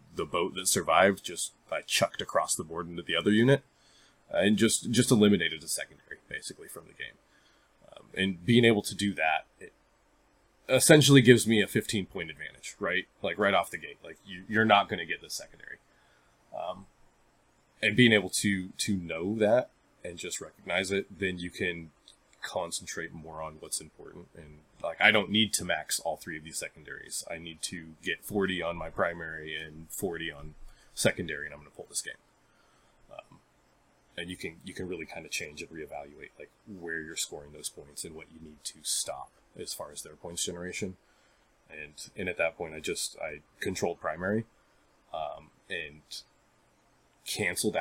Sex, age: male, 20-39